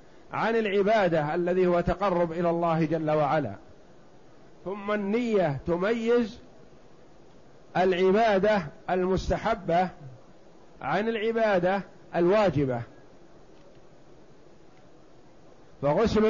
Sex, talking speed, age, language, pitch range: male, 65 wpm, 50-69, Arabic, 160-205 Hz